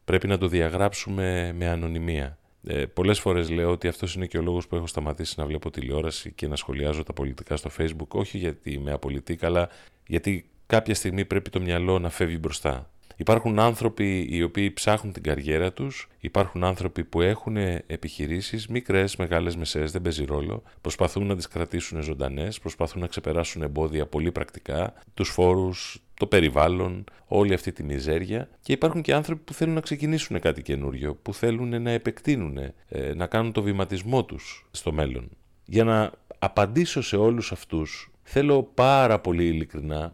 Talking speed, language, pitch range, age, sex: 165 wpm, Greek, 80-100 Hz, 30-49, male